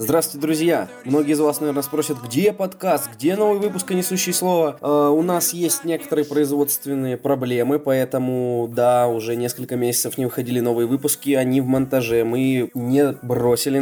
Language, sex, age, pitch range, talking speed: Russian, male, 20-39, 120-150 Hz, 150 wpm